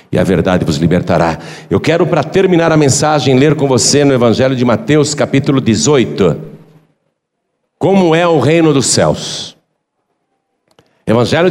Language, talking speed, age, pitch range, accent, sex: Portuguese, 140 wpm, 60-79, 145-185 Hz, Brazilian, male